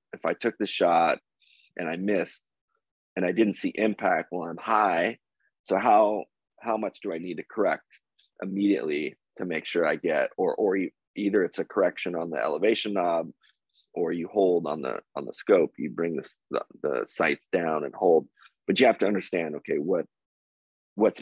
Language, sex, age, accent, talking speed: English, male, 30-49, American, 185 wpm